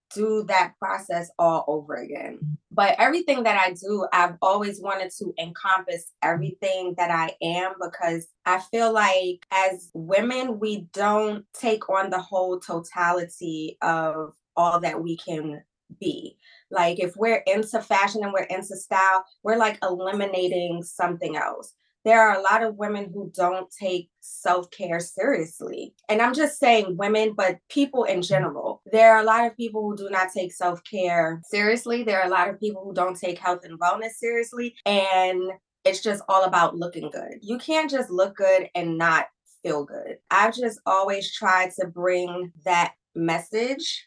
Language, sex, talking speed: English, female, 165 wpm